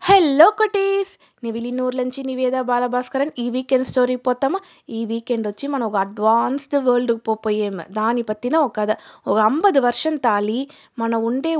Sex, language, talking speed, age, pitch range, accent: female, Telugu, 155 wpm, 20-39, 225-265 Hz, native